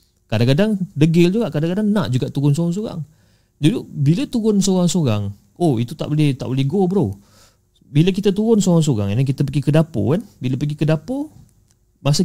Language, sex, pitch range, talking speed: Malay, male, 115-170 Hz, 170 wpm